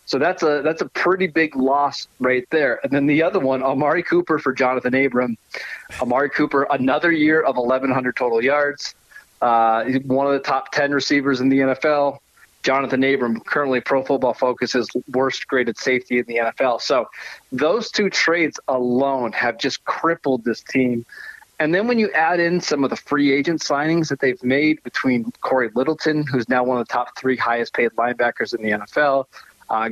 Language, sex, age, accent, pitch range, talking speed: English, male, 30-49, American, 125-145 Hz, 185 wpm